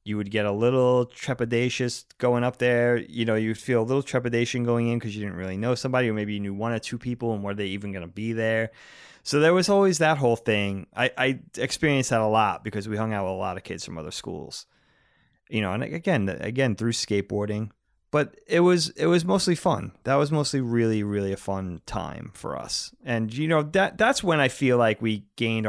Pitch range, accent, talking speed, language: 105-125 Hz, American, 235 wpm, English